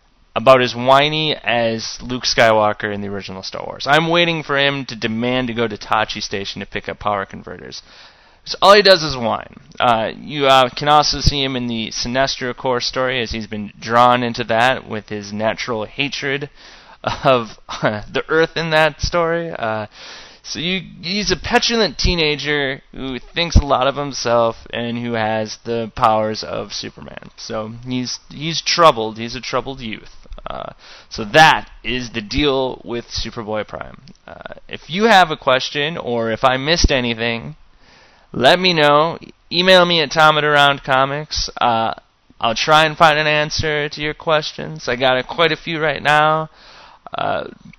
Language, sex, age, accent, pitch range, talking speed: English, male, 20-39, American, 115-155 Hz, 175 wpm